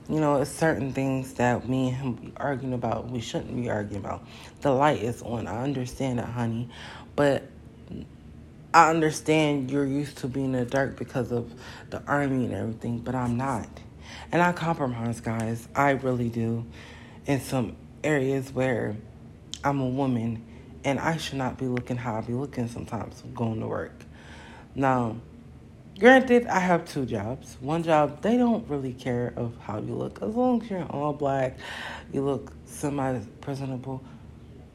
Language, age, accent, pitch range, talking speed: English, 30-49, American, 115-135 Hz, 165 wpm